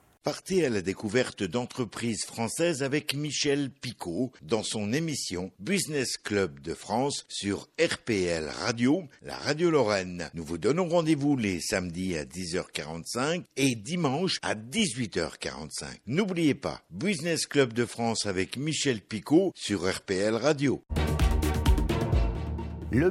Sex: male